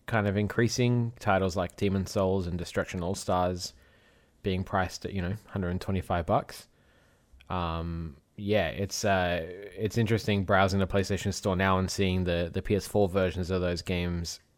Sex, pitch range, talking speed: male, 90-105 Hz, 150 wpm